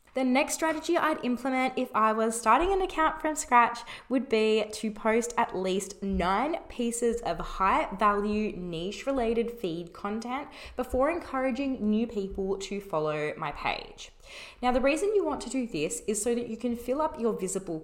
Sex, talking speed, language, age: female, 180 wpm, English, 20-39